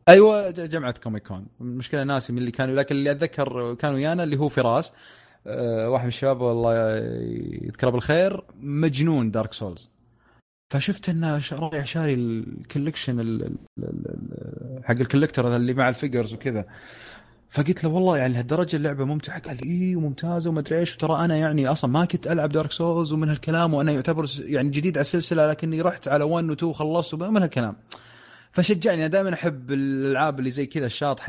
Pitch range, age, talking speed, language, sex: 125-160 Hz, 30-49, 160 wpm, Arabic, male